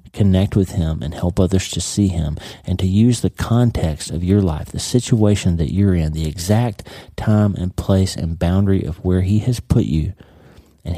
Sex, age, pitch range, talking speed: male, 40-59, 85-105 Hz, 195 wpm